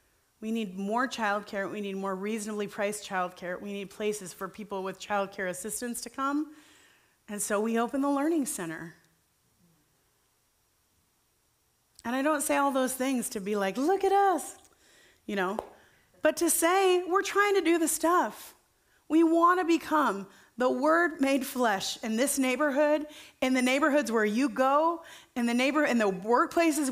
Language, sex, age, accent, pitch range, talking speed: English, female, 30-49, American, 200-280 Hz, 170 wpm